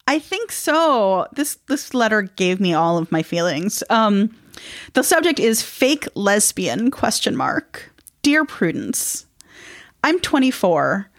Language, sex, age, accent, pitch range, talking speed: English, female, 30-49, American, 165-230 Hz, 130 wpm